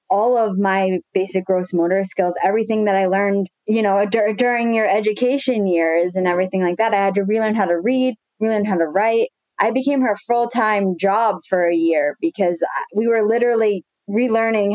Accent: American